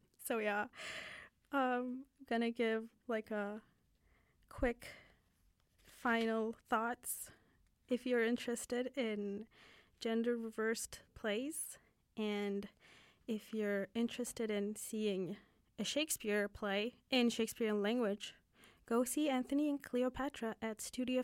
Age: 20-39